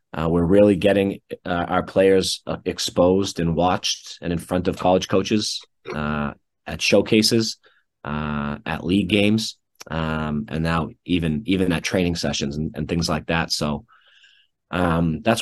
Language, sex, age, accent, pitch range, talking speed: English, male, 30-49, American, 80-95 Hz, 155 wpm